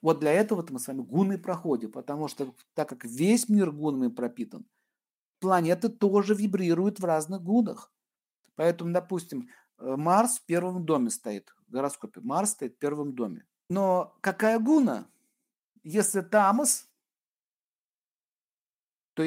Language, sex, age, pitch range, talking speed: Russian, male, 50-69, 150-215 Hz, 130 wpm